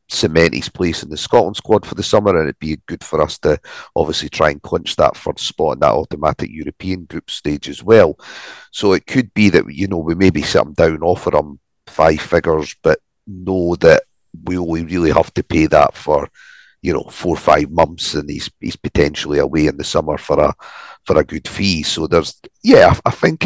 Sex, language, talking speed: male, English, 215 wpm